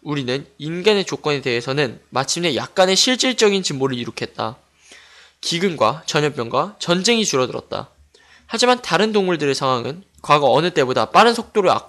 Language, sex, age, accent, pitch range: Korean, male, 20-39, native, 135-205 Hz